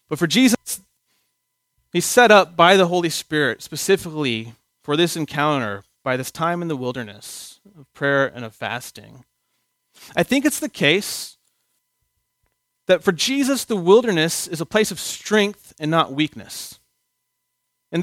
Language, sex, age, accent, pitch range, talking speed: English, male, 30-49, American, 155-200 Hz, 145 wpm